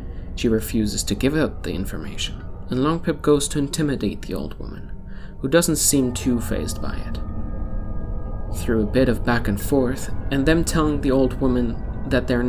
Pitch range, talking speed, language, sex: 95-130 Hz, 180 wpm, English, male